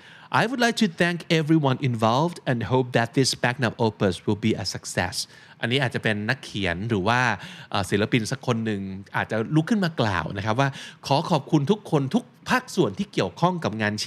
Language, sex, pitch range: Thai, male, 110-155 Hz